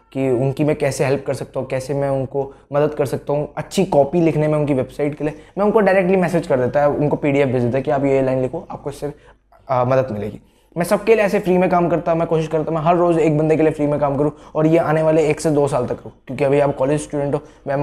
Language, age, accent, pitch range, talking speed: Hindi, 20-39, native, 135-160 Hz, 280 wpm